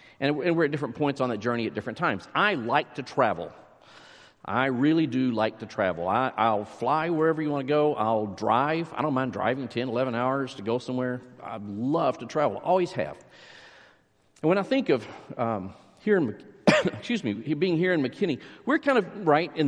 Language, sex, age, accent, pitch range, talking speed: English, male, 50-69, American, 120-160 Hz, 200 wpm